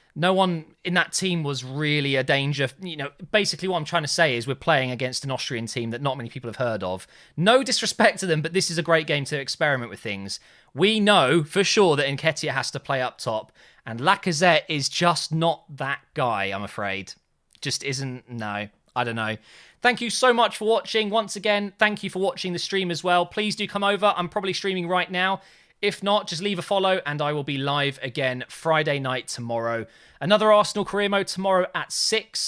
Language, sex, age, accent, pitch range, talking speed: English, male, 20-39, British, 140-195 Hz, 220 wpm